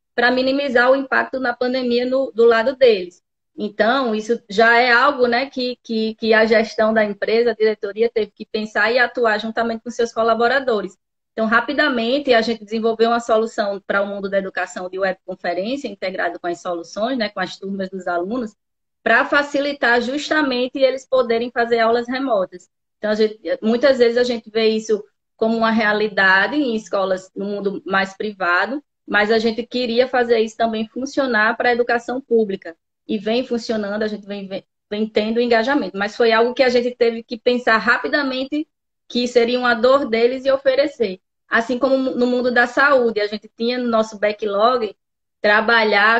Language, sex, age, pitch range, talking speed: Portuguese, female, 20-39, 215-250 Hz, 175 wpm